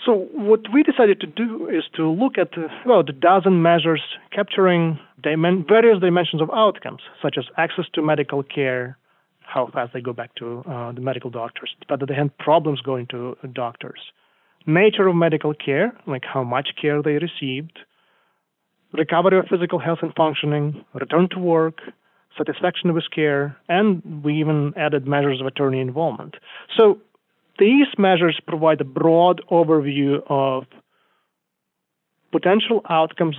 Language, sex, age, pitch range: English, male, 30-49, 145-190 Hz